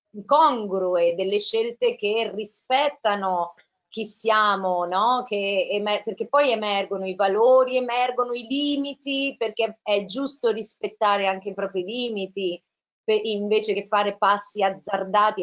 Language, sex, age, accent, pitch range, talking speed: Italian, female, 30-49, native, 195-255 Hz, 125 wpm